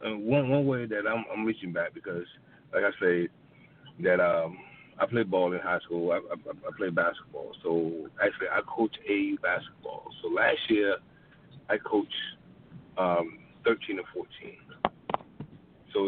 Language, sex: English, male